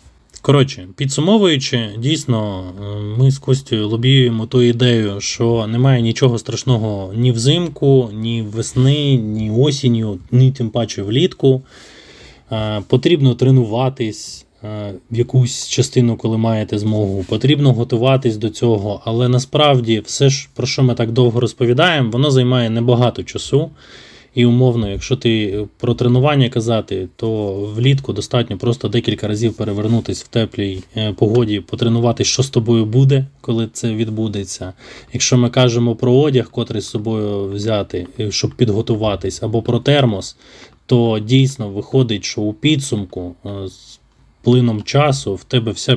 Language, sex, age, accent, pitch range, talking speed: Ukrainian, male, 20-39, native, 105-130 Hz, 130 wpm